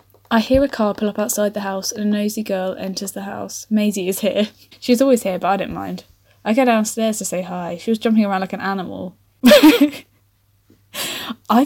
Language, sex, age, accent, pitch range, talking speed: English, female, 10-29, British, 180-245 Hz, 205 wpm